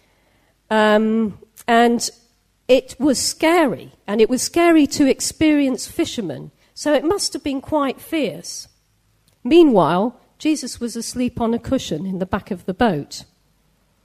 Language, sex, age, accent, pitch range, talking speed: English, female, 40-59, British, 205-330 Hz, 135 wpm